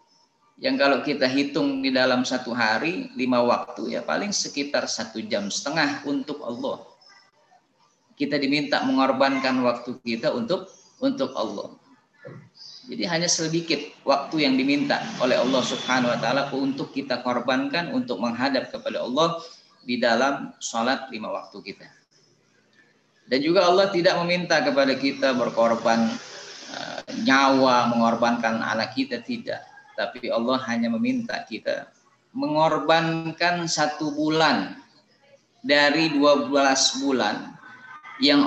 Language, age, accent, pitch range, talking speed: Indonesian, 20-39, native, 130-175 Hz, 120 wpm